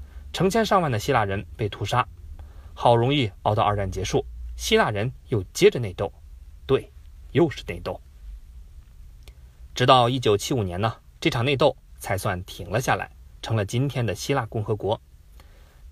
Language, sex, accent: Chinese, male, native